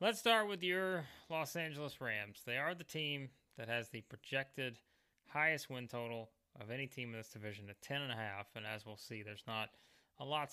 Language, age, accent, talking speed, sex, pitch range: English, 20-39, American, 200 wpm, male, 110-130 Hz